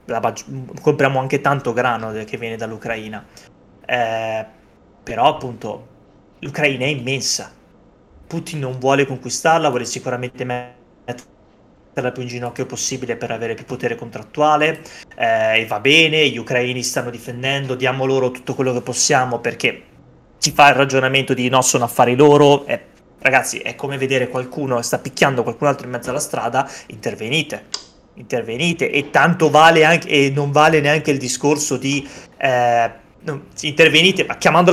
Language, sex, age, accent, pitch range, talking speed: Italian, male, 20-39, native, 125-150 Hz, 150 wpm